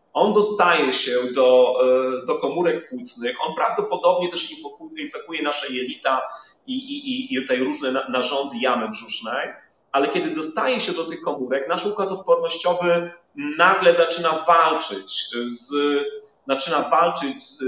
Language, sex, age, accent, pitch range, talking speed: Polish, male, 30-49, native, 135-205 Hz, 125 wpm